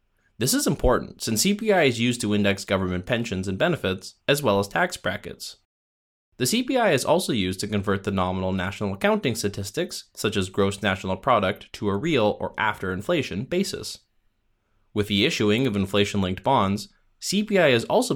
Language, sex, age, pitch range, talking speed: English, male, 20-39, 95-130 Hz, 160 wpm